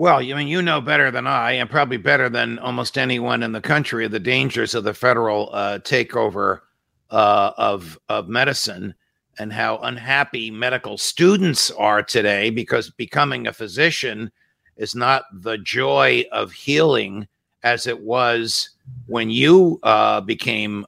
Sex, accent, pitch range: male, American, 115-155 Hz